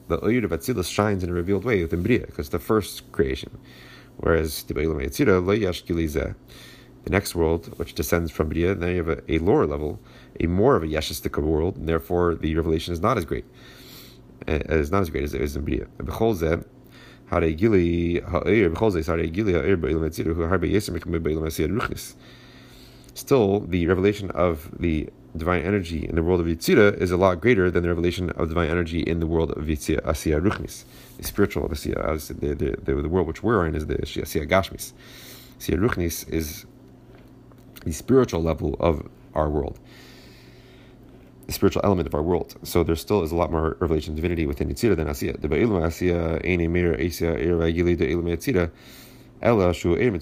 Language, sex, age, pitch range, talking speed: English, male, 30-49, 80-100 Hz, 150 wpm